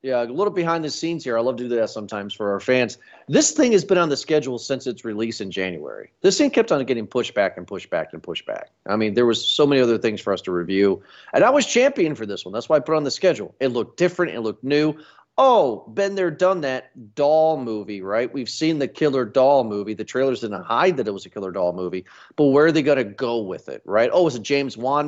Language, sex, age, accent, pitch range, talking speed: English, male, 40-59, American, 115-155 Hz, 275 wpm